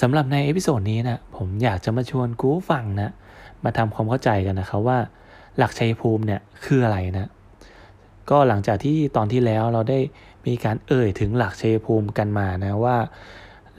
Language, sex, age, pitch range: Thai, male, 20-39, 100-130 Hz